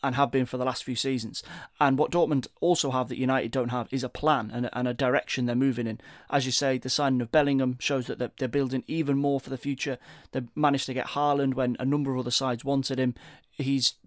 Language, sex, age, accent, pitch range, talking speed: English, male, 30-49, British, 125-145 Hz, 250 wpm